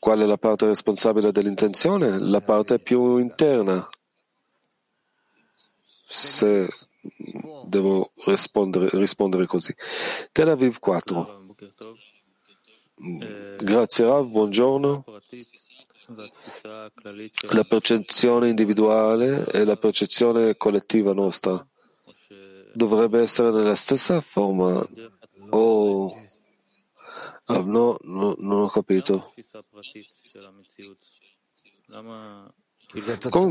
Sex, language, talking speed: male, Italian, 70 wpm